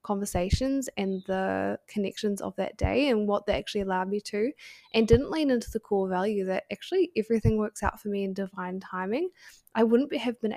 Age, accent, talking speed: 10-29, Australian, 200 wpm